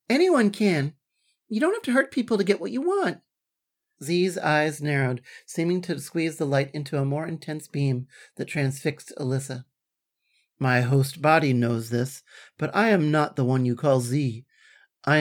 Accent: American